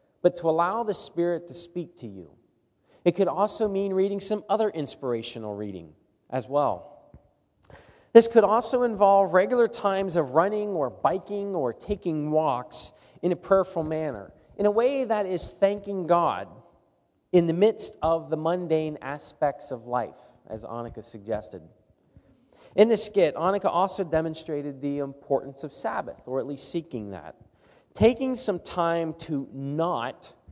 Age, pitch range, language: 40-59, 135-190 Hz, English